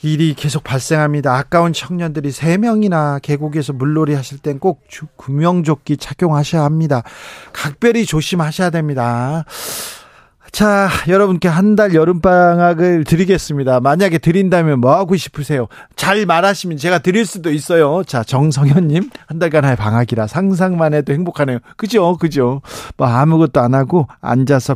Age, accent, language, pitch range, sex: 40-59, native, Korean, 130-175 Hz, male